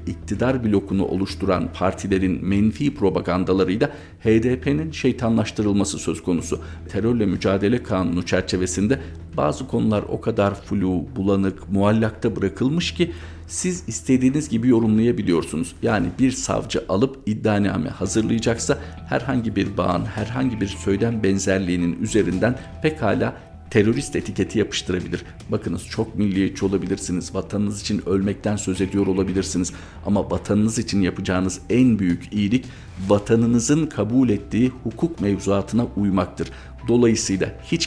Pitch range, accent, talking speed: 95-115 Hz, native, 110 wpm